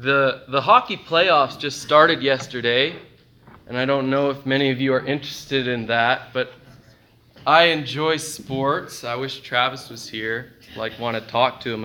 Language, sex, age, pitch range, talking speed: English, male, 20-39, 115-145 Hz, 170 wpm